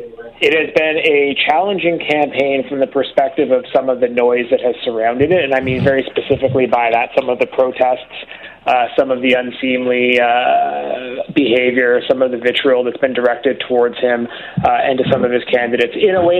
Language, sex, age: English, male, 30-49